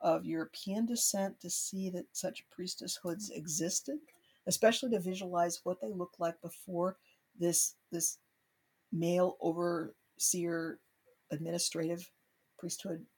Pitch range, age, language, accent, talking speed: 165-185 Hz, 60-79, English, American, 105 wpm